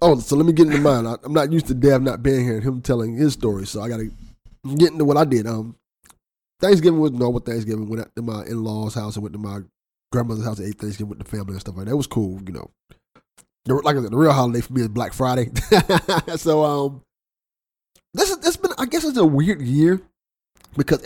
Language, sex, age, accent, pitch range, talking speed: English, male, 30-49, American, 120-150 Hz, 240 wpm